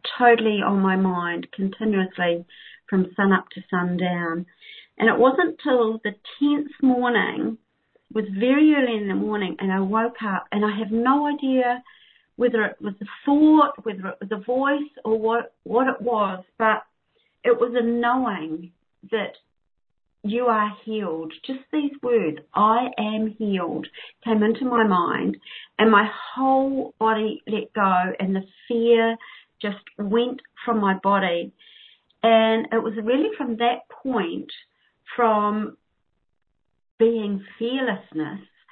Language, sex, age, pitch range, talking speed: English, female, 50-69, 185-240 Hz, 140 wpm